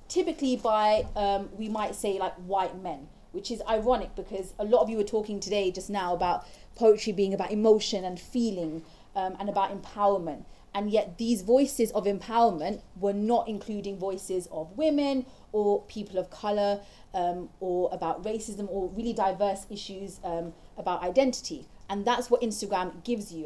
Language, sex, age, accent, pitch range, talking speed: English, female, 30-49, British, 185-220 Hz, 165 wpm